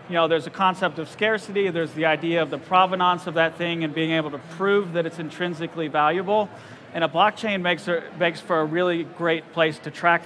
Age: 40-59